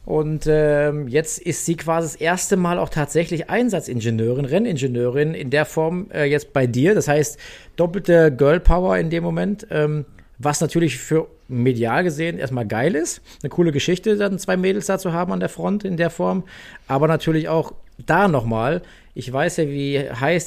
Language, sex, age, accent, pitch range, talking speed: German, male, 40-59, German, 130-175 Hz, 180 wpm